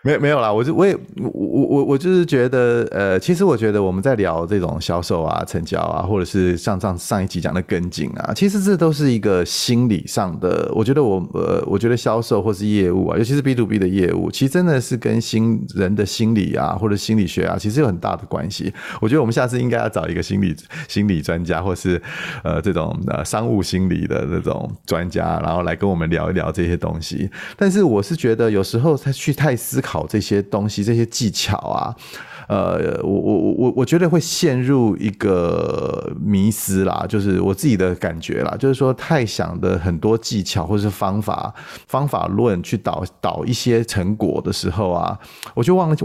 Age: 30-49